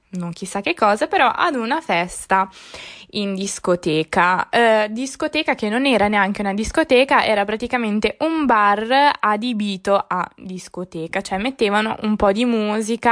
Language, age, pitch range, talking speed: Italian, 20-39, 195-260 Hz, 140 wpm